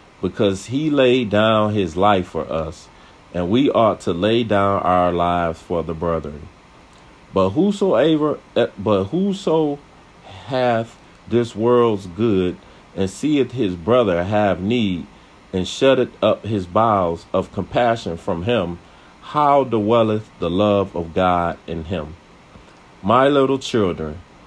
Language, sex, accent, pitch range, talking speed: English, male, American, 85-120 Hz, 130 wpm